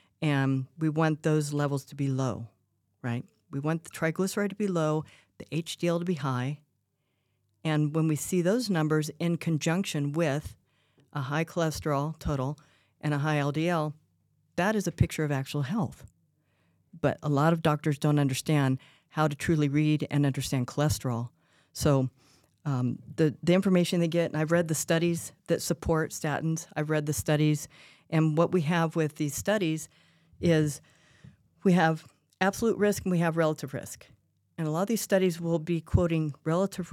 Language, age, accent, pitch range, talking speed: English, 40-59, American, 145-170 Hz, 170 wpm